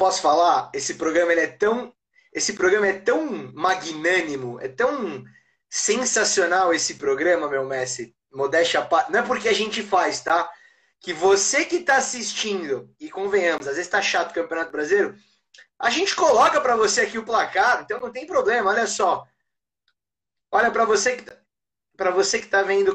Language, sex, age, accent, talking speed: Portuguese, male, 20-39, Brazilian, 165 wpm